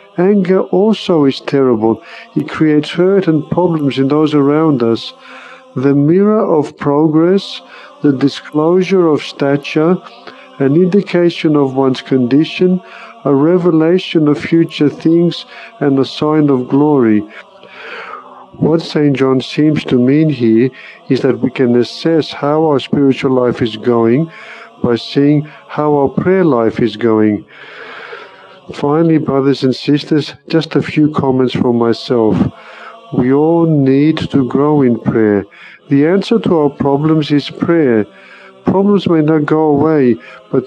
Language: English